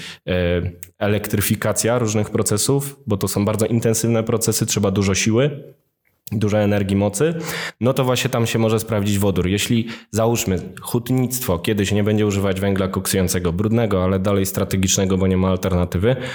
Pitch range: 95-110 Hz